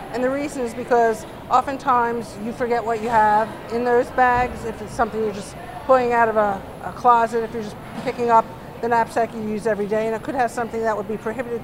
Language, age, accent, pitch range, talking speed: English, 50-69, American, 210-245 Hz, 230 wpm